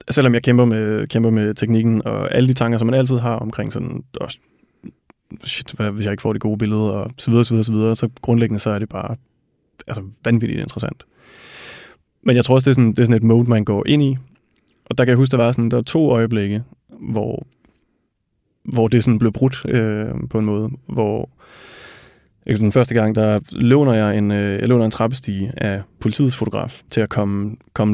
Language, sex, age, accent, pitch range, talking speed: Danish, male, 20-39, native, 110-125 Hz, 210 wpm